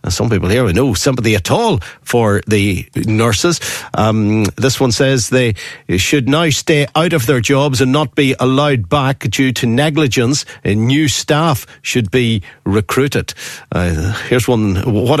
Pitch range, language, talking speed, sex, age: 105-135 Hz, English, 160 wpm, male, 50-69